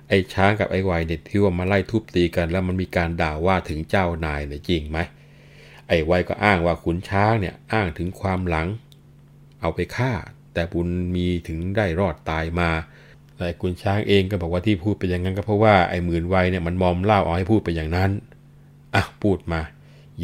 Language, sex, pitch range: Thai, male, 80-105 Hz